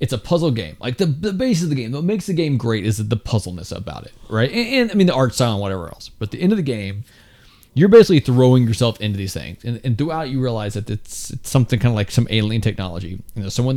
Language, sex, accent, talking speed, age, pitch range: English, male, American, 285 wpm, 30-49, 100-130 Hz